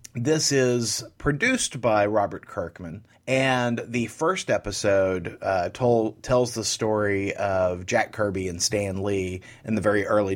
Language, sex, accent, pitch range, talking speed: English, male, American, 100-130 Hz, 145 wpm